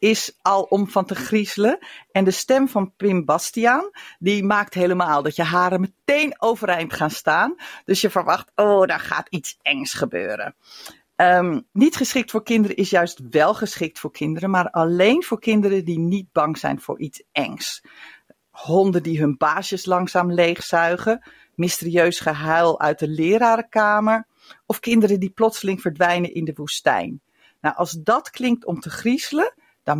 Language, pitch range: Dutch, 170-225 Hz